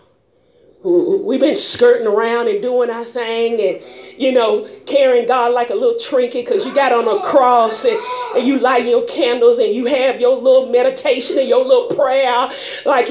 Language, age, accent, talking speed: English, 40-59, American, 185 wpm